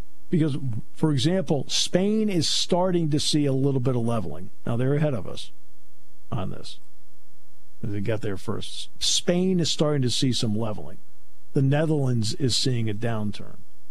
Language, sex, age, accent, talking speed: English, male, 50-69, American, 160 wpm